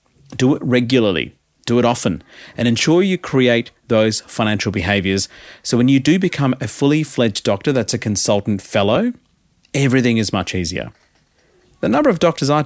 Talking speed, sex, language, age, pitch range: 160 wpm, male, English, 30-49, 100-140 Hz